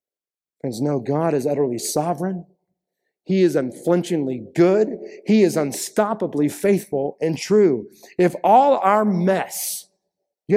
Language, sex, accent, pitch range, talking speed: English, male, American, 150-200 Hz, 115 wpm